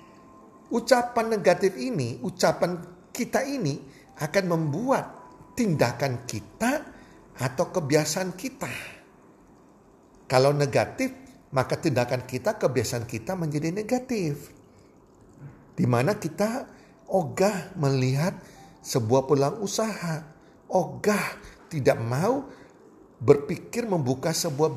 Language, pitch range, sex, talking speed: Indonesian, 135-200 Hz, male, 85 wpm